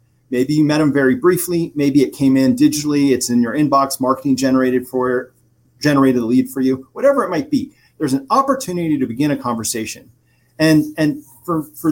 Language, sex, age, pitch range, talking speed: English, male, 40-59, 130-200 Hz, 190 wpm